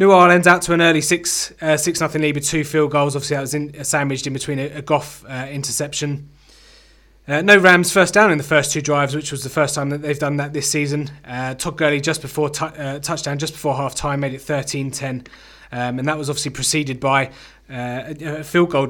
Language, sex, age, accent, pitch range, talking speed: English, male, 20-39, British, 135-160 Hz, 240 wpm